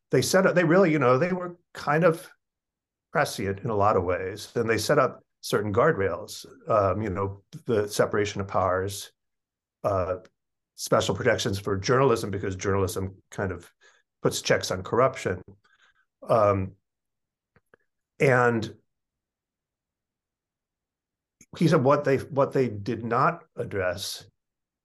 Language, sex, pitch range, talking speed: English, male, 100-125 Hz, 130 wpm